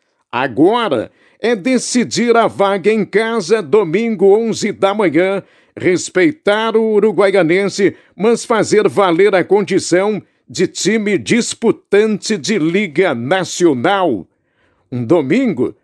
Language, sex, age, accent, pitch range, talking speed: Portuguese, male, 60-79, Brazilian, 190-235 Hz, 100 wpm